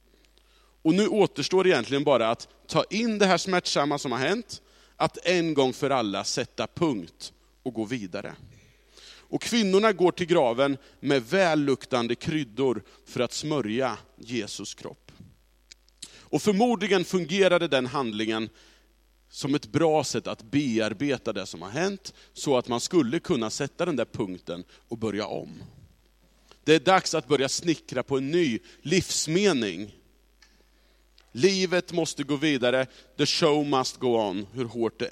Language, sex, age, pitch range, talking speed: Swedish, male, 30-49, 120-175 Hz, 150 wpm